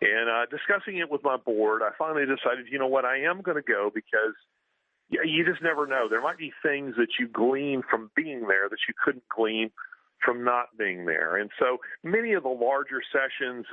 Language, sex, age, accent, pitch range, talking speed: English, male, 40-59, American, 120-200 Hz, 215 wpm